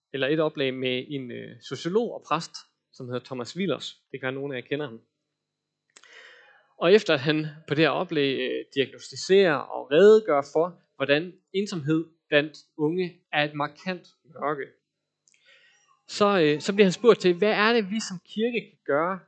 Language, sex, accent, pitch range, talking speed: Danish, male, native, 150-210 Hz, 175 wpm